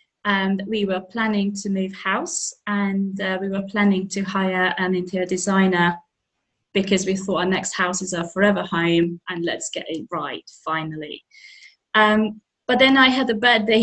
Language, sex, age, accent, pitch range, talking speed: English, female, 30-49, British, 180-230 Hz, 180 wpm